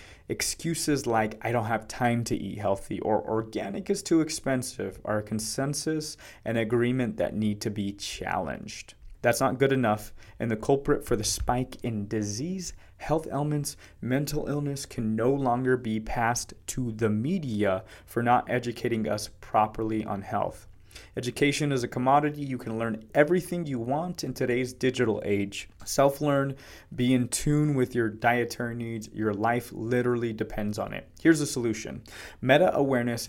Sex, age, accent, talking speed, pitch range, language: male, 20-39, American, 160 wpm, 110-135 Hz, English